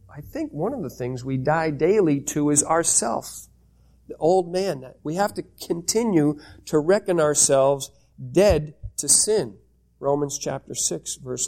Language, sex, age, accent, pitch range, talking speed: English, male, 50-69, American, 120-160 Hz, 150 wpm